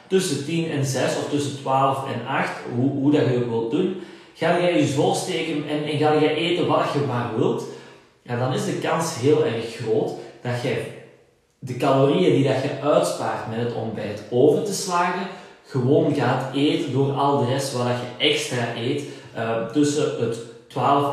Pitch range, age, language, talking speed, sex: 115-145 Hz, 30-49, Dutch, 185 wpm, male